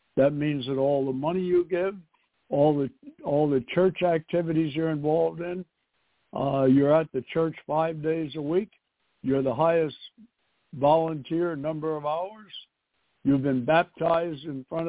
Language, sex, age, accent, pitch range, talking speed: English, male, 60-79, American, 145-175 Hz, 155 wpm